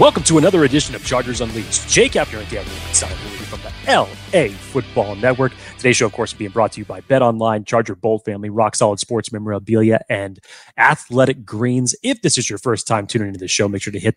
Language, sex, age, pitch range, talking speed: English, male, 30-49, 110-145 Hz, 230 wpm